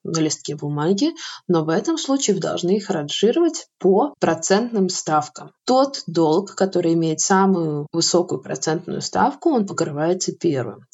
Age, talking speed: 20-39, 135 wpm